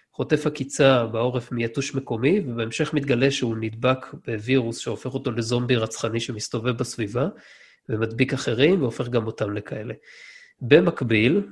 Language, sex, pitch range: Hebrew, male, 115-135 Hz